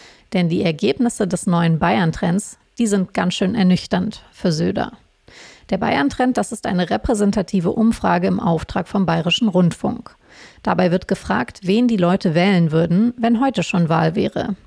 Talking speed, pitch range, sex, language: 155 wpm, 180-215 Hz, female, German